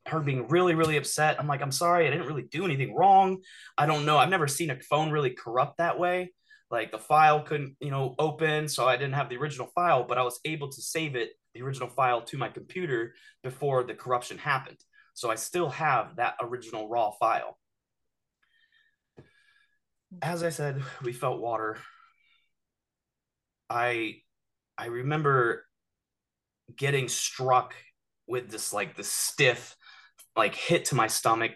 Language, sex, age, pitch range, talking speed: English, male, 20-39, 125-170 Hz, 165 wpm